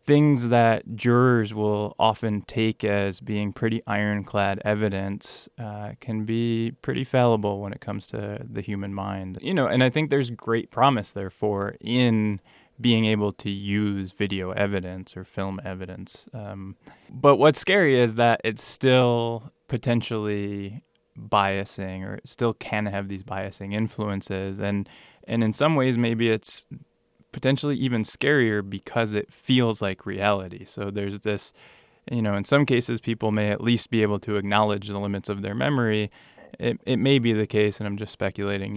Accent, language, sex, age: American, English, male, 20-39